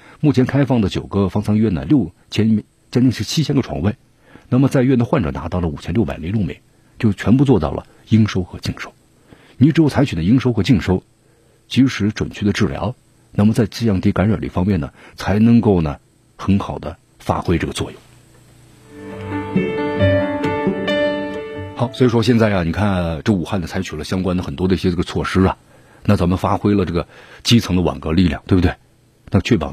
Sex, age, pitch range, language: male, 50-69, 90-125 Hz, Chinese